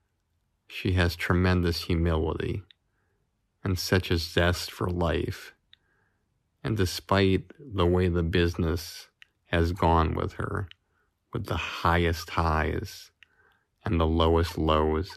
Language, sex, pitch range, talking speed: English, male, 85-100 Hz, 110 wpm